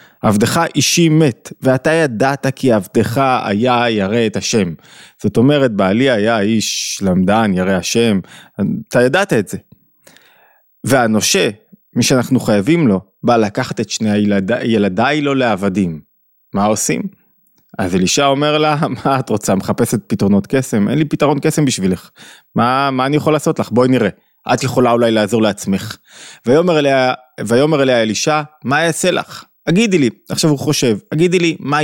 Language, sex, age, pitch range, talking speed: Hebrew, male, 20-39, 115-155 Hz, 155 wpm